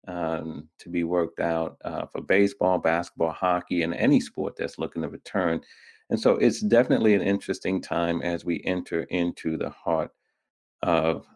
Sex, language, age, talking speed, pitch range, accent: male, English, 40-59, 175 wpm, 85-95 Hz, American